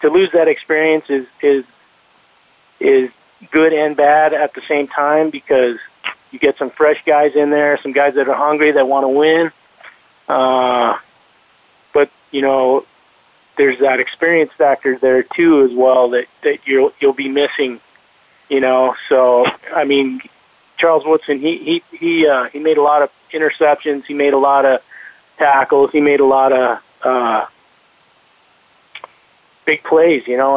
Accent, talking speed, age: American, 160 wpm, 40-59